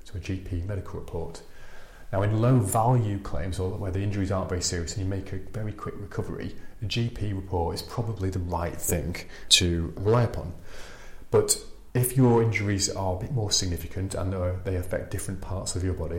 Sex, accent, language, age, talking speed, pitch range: male, British, English, 30-49, 190 wpm, 85-100 Hz